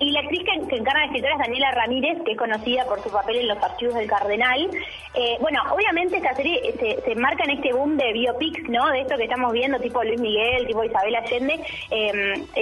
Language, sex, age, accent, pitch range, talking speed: Spanish, female, 20-39, Argentinian, 215-270 Hz, 230 wpm